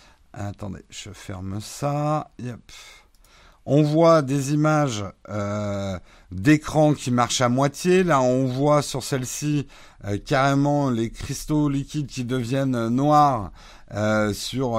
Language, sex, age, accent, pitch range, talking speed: French, male, 50-69, French, 110-150 Hz, 115 wpm